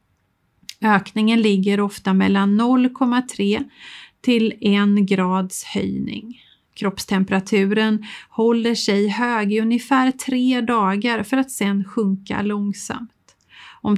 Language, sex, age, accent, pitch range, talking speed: English, female, 30-49, Swedish, 195-240 Hz, 100 wpm